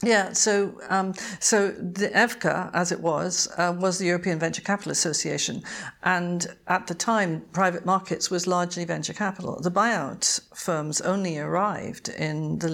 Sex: female